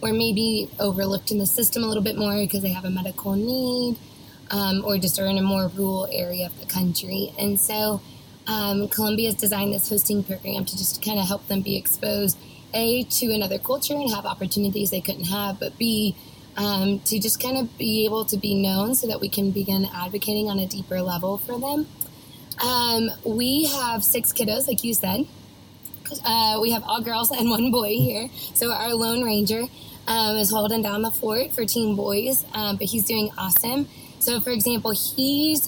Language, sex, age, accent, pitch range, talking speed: English, female, 20-39, American, 195-225 Hz, 195 wpm